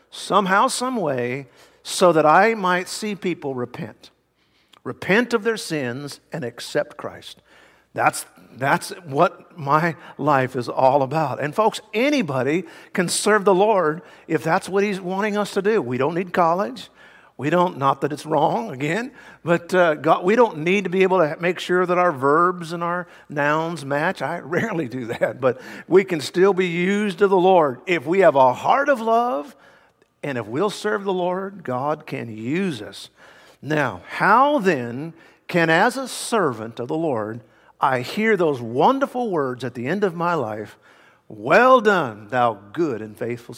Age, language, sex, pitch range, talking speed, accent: 50-69, English, male, 140-200 Hz, 175 wpm, American